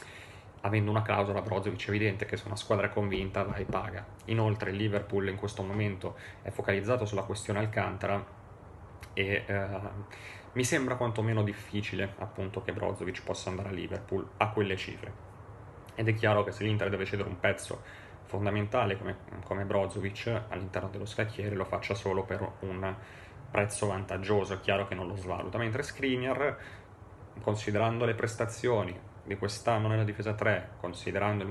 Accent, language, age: native, Italian, 30-49